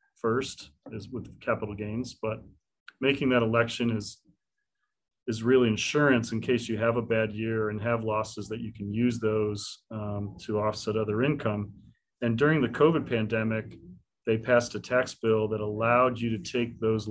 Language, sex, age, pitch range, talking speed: English, male, 40-59, 105-120 Hz, 170 wpm